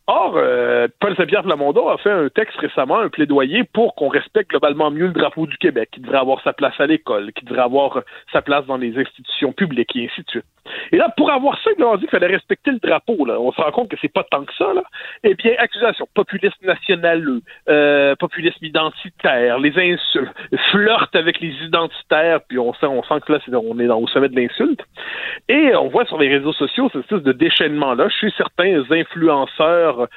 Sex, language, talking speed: male, French, 215 wpm